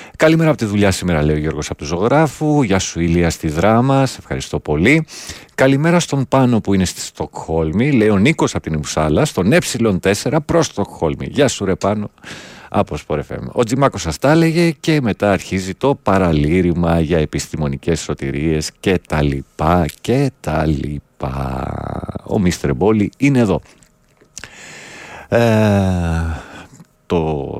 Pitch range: 80-115 Hz